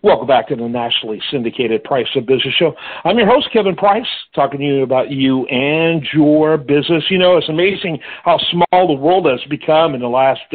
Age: 50-69